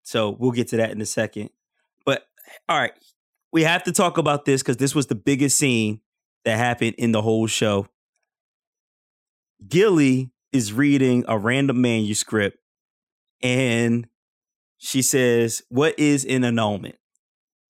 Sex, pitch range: male, 115-150 Hz